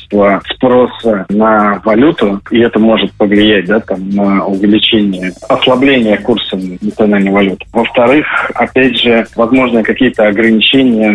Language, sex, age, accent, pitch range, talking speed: Russian, male, 20-39, native, 105-120 Hz, 115 wpm